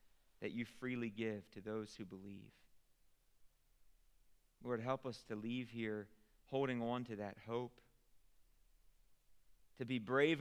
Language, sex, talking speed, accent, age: English, male, 125 wpm, American, 40-59